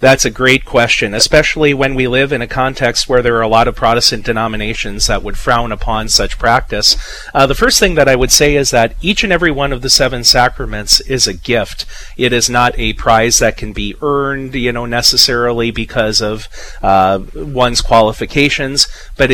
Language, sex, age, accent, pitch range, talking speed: English, male, 40-59, American, 110-135 Hz, 200 wpm